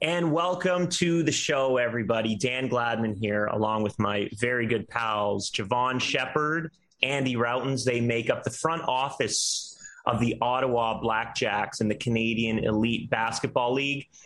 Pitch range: 115-140 Hz